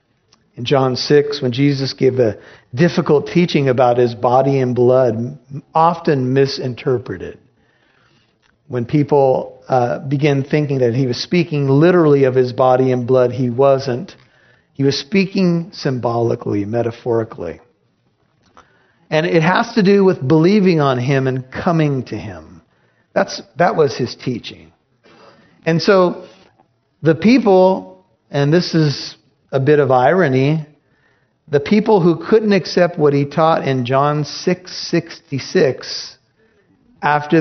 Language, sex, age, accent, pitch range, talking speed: English, male, 50-69, American, 130-180 Hz, 130 wpm